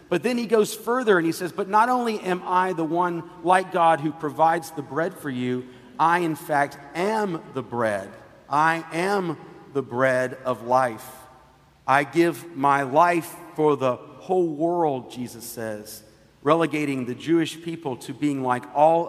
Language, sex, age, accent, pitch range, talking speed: English, male, 50-69, American, 130-170 Hz, 165 wpm